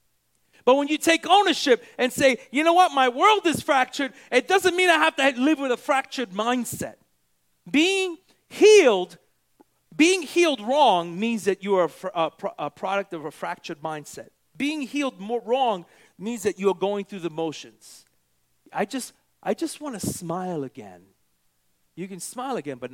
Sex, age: male, 40-59